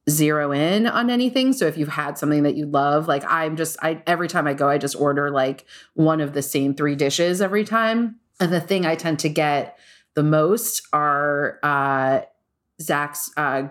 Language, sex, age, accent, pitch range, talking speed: English, female, 30-49, American, 145-175 Hz, 195 wpm